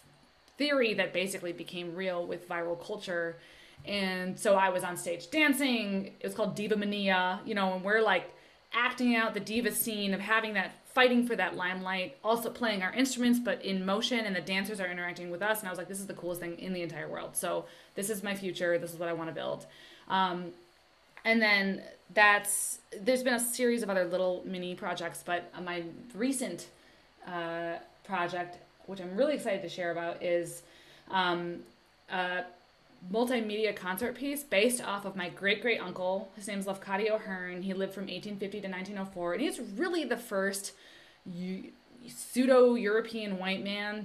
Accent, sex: American, female